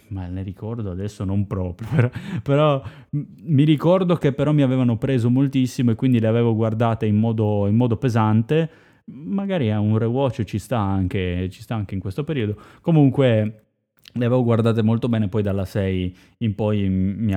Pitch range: 95-120 Hz